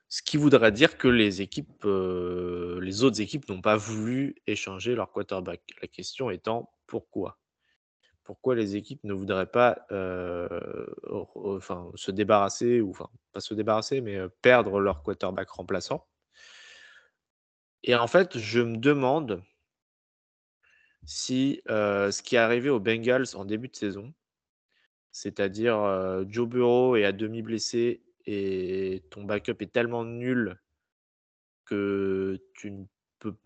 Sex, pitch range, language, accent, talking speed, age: male, 95-120 Hz, French, French, 140 wpm, 20-39